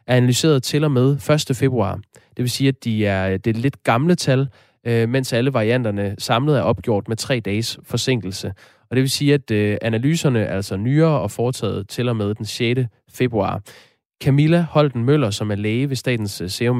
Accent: native